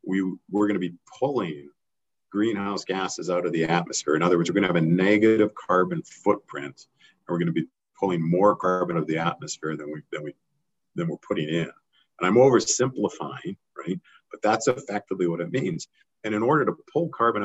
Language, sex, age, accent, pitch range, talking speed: English, male, 50-69, American, 85-105 Hz, 195 wpm